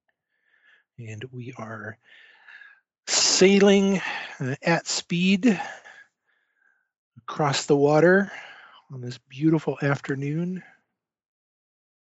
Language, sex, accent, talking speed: English, male, American, 65 wpm